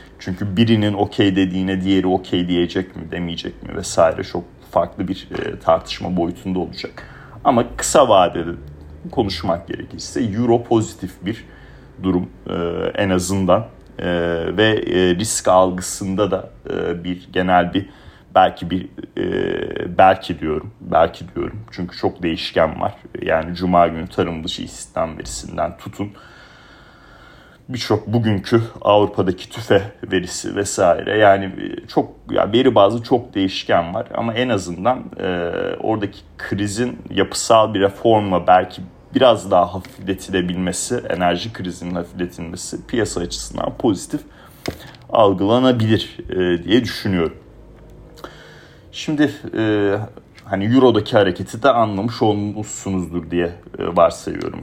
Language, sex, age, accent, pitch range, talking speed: Turkish, male, 40-59, native, 90-105 Hz, 110 wpm